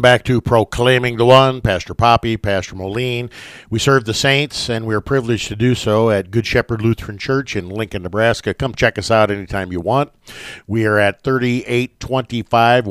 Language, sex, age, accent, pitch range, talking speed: English, male, 50-69, American, 100-120 Hz, 180 wpm